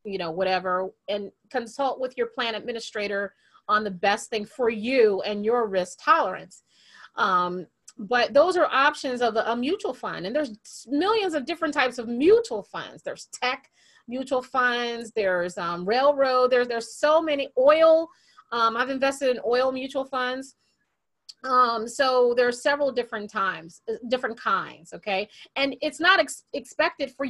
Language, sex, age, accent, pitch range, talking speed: English, female, 30-49, American, 215-275 Hz, 155 wpm